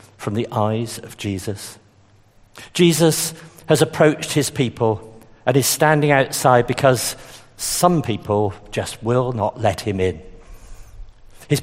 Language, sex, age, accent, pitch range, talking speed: English, male, 50-69, British, 105-155 Hz, 125 wpm